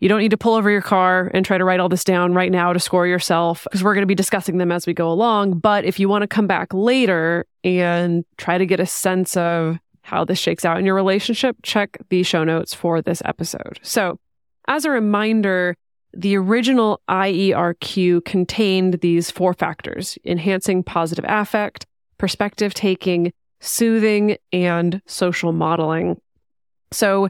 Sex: female